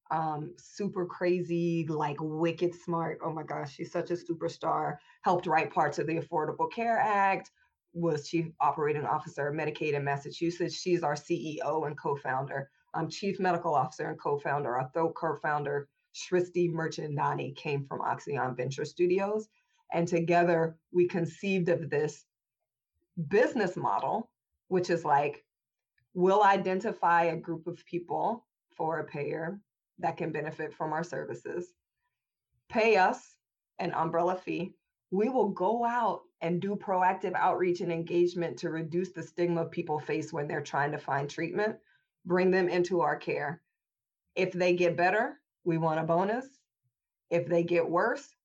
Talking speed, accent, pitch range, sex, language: 150 wpm, American, 155-185 Hz, female, English